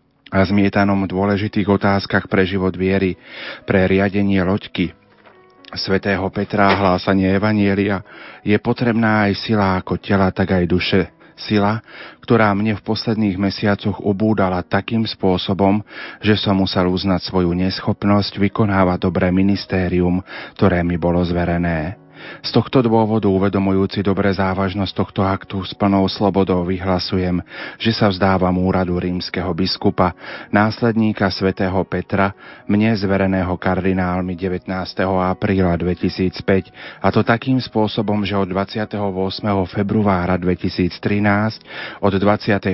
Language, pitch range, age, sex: Slovak, 95-105 Hz, 40-59, male